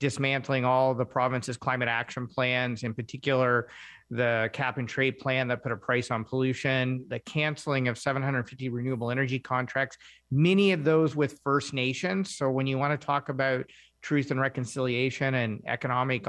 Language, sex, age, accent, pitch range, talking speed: English, male, 40-59, American, 130-160 Hz, 170 wpm